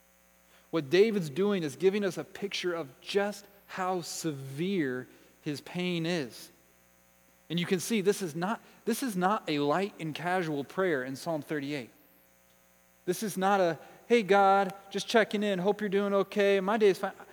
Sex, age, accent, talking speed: male, 30-49, American, 175 wpm